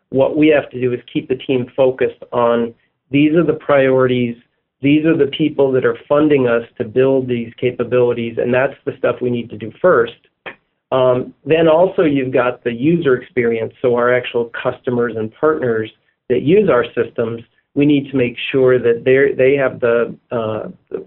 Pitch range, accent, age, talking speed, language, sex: 120-140 Hz, American, 40-59, 185 wpm, English, male